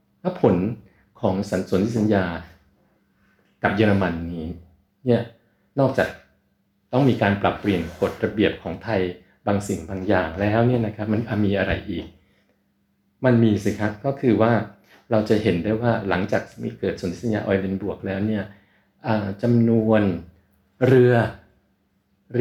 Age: 60-79